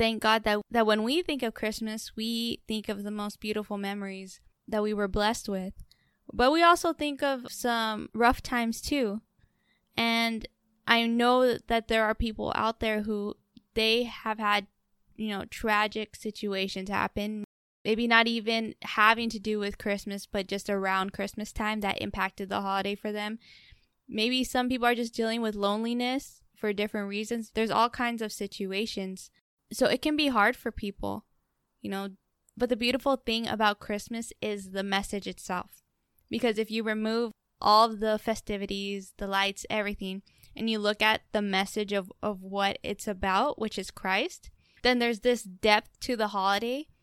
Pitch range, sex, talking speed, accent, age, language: 205-230 Hz, female, 170 wpm, American, 10-29, English